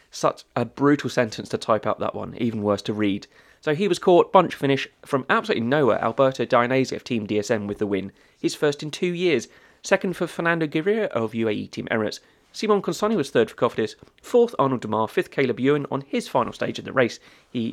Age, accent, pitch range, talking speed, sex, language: 30-49, British, 110-160 Hz, 215 wpm, male, English